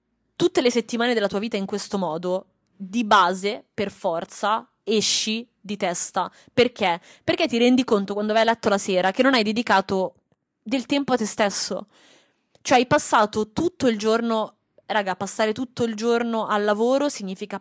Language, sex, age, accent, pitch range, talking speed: Italian, female, 20-39, native, 195-245 Hz, 170 wpm